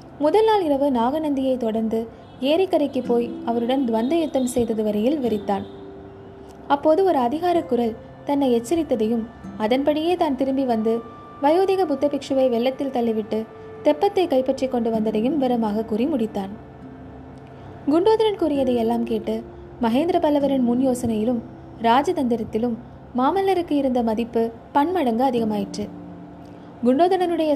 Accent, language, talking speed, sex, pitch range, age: native, Tamil, 100 wpm, female, 225-280 Hz, 20-39